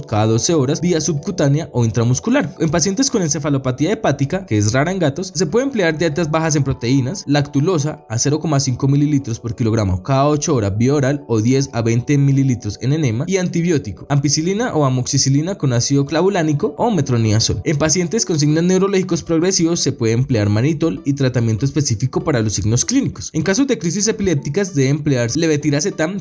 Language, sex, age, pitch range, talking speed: Spanish, male, 20-39, 125-165 Hz, 175 wpm